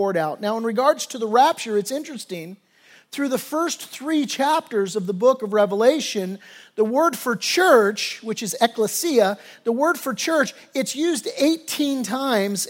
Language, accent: English, American